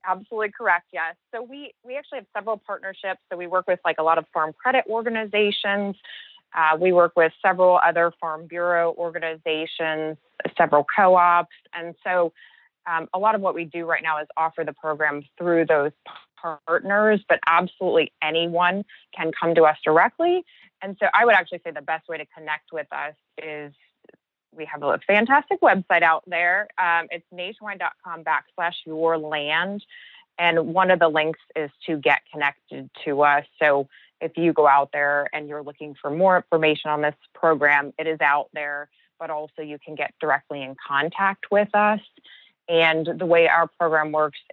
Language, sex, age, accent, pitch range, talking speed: English, female, 20-39, American, 150-180 Hz, 175 wpm